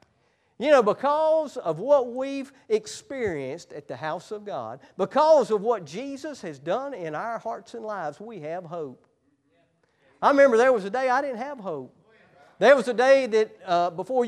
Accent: American